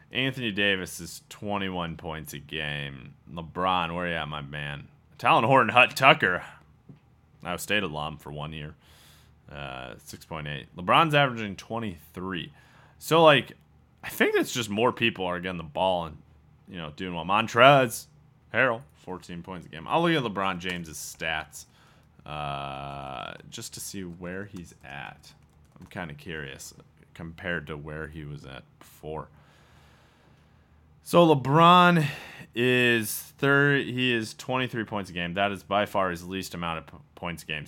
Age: 30-49